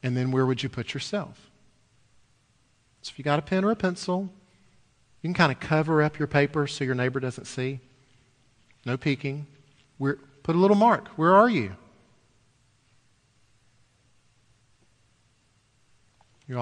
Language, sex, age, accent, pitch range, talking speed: English, male, 40-59, American, 115-155 Hz, 145 wpm